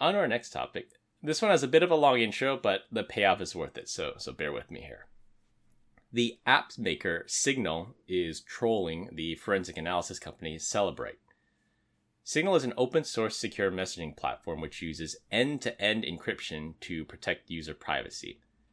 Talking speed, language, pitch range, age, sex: 165 wpm, English, 80-120 Hz, 30-49, male